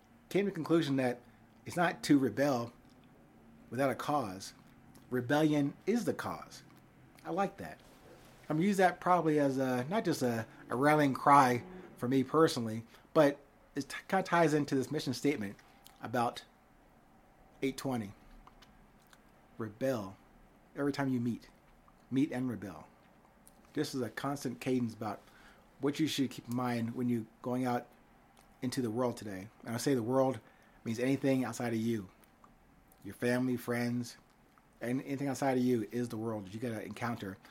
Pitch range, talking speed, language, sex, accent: 115-135 Hz, 160 wpm, English, male, American